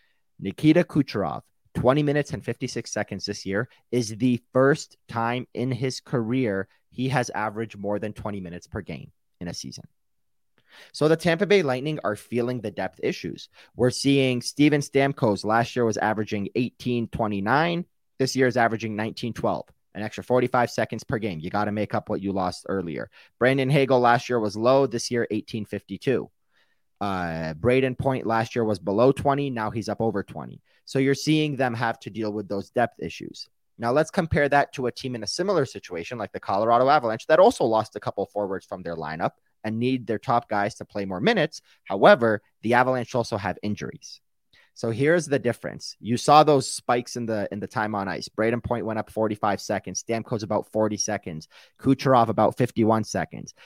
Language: English